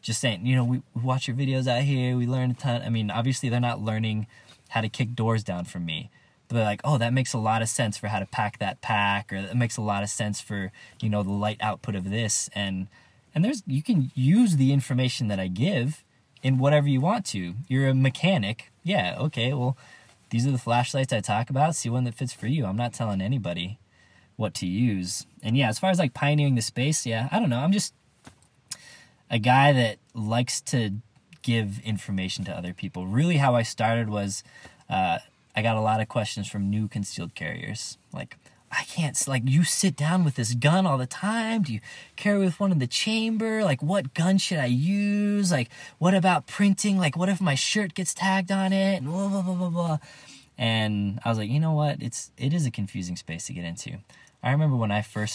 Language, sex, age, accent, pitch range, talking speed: English, male, 20-39, American, 110-150 Hz, 225 wpm